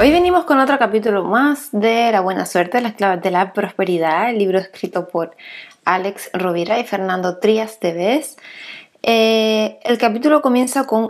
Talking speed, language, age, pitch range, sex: 160 wpm, Spanish, 20-39, 190-255 Hz, female